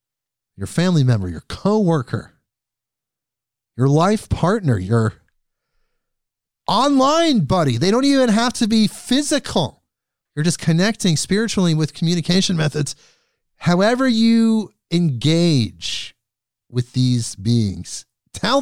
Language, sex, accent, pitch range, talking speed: English, male, American, 120-180 Hz, 105 wpm